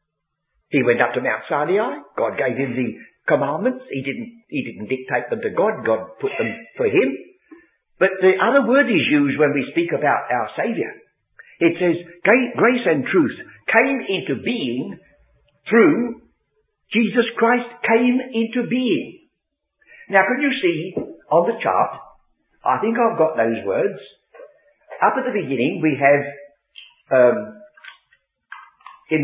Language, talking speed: English, 145 wpm